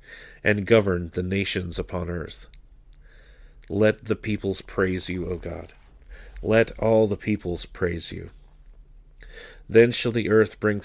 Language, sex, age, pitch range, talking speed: English, male, 40-59, 90-110 Hz, 135 wpm